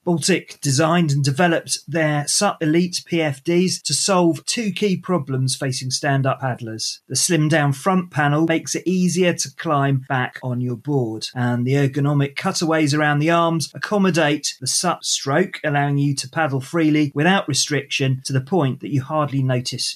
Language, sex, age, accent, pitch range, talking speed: English, male, 30-49, British, 135-165 Hz, 165 wpm